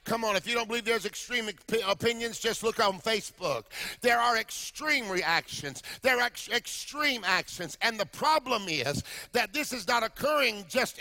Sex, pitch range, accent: male, 220-275 Hz, American